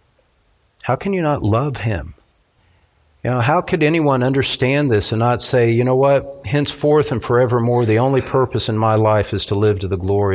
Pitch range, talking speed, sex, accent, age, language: 105-140 Hz, 195 wpm, male, American, 50-69, English